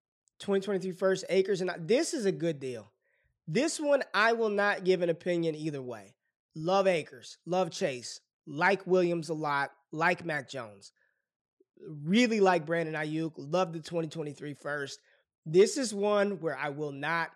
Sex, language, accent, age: male, English, American, 20-39